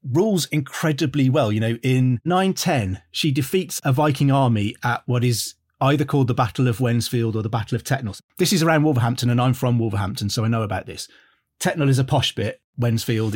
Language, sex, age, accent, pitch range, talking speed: English, male, 30-49, British, 115-140 Hz, 200 wpm